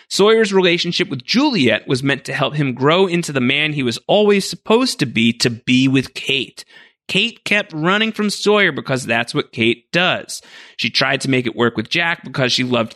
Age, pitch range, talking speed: 30-49, 130-195 Hz, 205 wpm